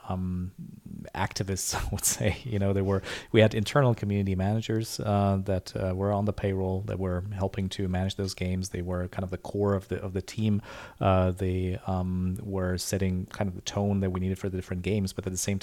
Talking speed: 225 wpm